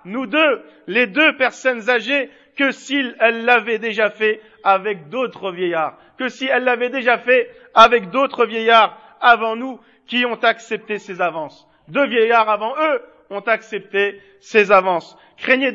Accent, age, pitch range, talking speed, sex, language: French, 50-69, 210-255 Hz, 150 wpm, male, French